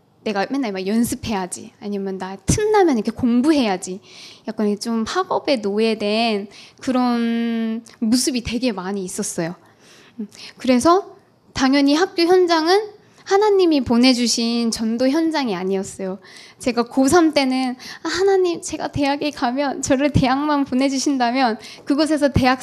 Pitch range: 210-290 Hz